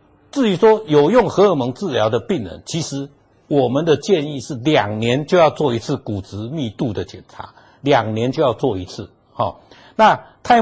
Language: Chinese